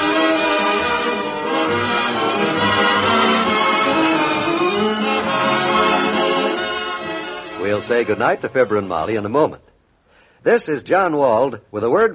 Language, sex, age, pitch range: English, male, 60-79, 135-190 Hz